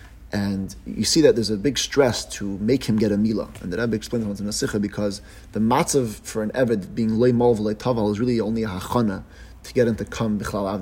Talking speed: 240 wpm